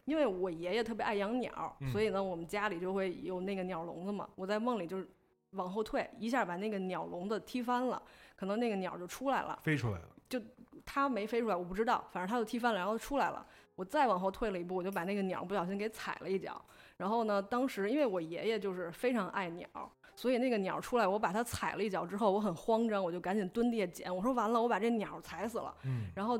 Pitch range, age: 180-225 Hz, 20-39